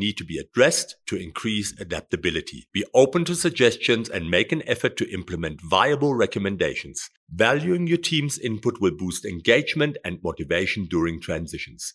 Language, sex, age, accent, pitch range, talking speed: English, male, 50-69, German, 100-145 Hz, 150 wpm